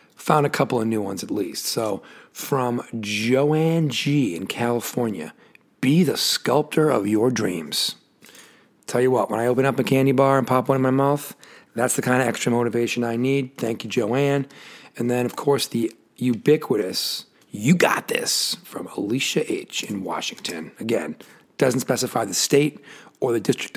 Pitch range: 115-140 Hz